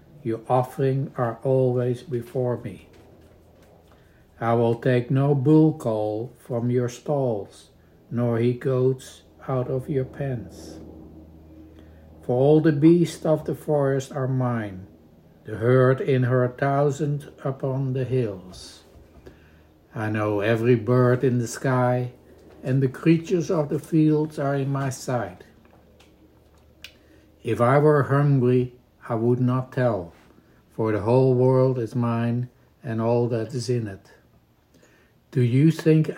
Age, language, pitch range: 60-79, English, 115-135 Hz